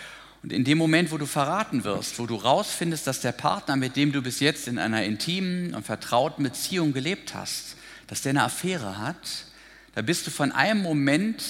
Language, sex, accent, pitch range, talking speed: German, male, German, 130-170 Hz, 200 wpm